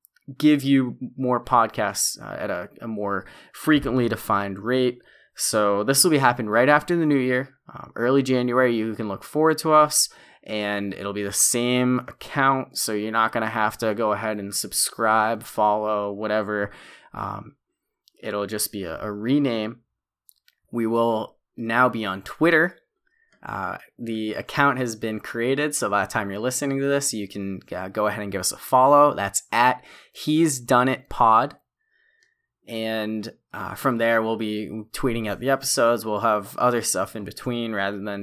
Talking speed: 175 wpm